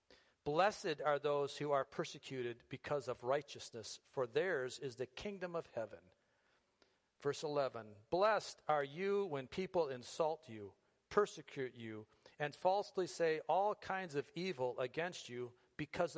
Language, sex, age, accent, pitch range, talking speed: English, male, 50-69, American, 135-180 Hz, 135 wpm